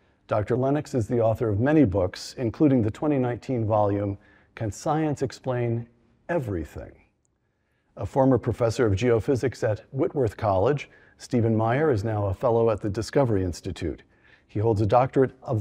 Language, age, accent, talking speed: English, 50-69, American, 150 wpm